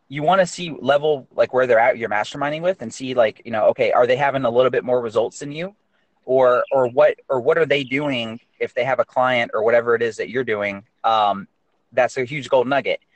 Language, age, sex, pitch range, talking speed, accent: English, 30-49, male, 125-150 Hz, 245 wpm, American